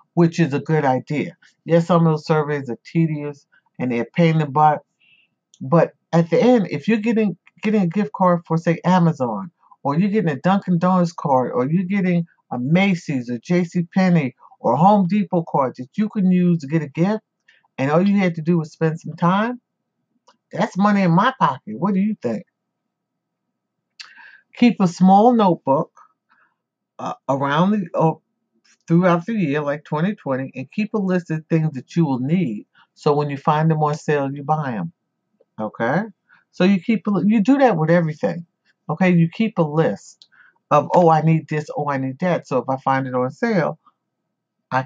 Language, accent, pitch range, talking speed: English, American, 150-190 Hz, 190 wpm